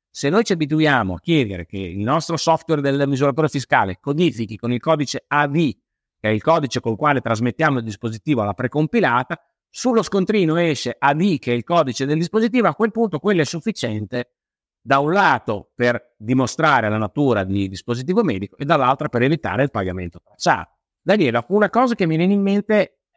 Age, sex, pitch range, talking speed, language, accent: 50-69, male, 105-155 Hz, 185 wpm, Italian, native